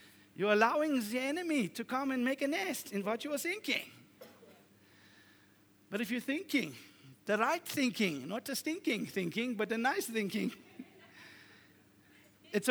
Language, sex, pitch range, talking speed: English, male, 170-240 Hz, 140 wpm